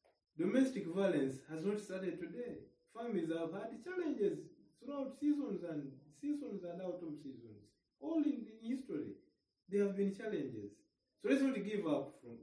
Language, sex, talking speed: English, male, 155 wpm